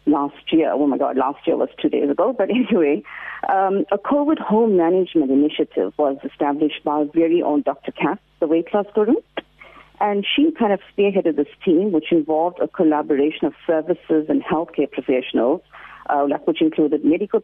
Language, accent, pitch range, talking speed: English, Indian, 155-200 Hz, 175 wpm